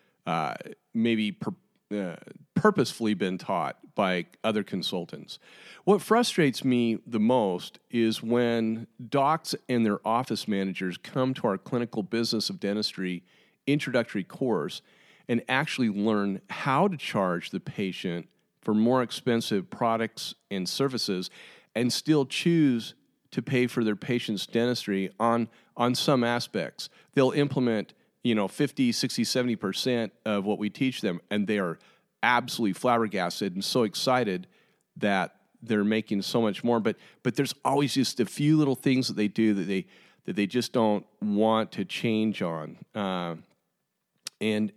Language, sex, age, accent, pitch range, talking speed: English, male, 40-59, American, 105-130 Hz, 145 wpm